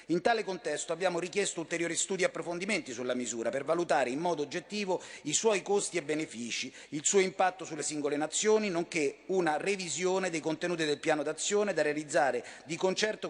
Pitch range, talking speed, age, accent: 155-195 Hz, 175 wpm, 30-49, native